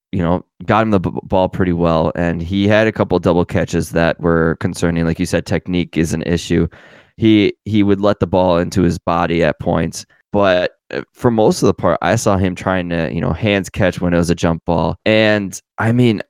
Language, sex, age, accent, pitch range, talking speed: English, male, 20-39, American, 85-105 Hz, 230 wpm